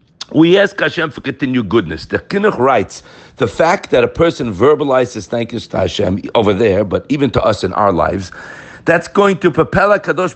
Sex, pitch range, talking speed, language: male, 125-180 Hz, 195 wpm, English